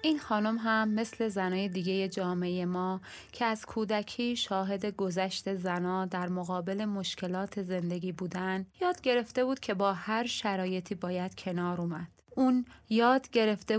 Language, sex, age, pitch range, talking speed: Persian, female, 20-39, 185-225 Hz, 140 wpm